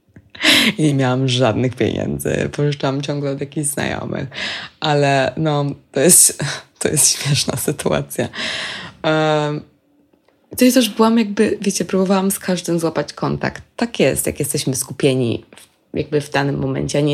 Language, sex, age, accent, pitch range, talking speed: Polish, female, 20-39, native, 135-170 Hz, 150 wpm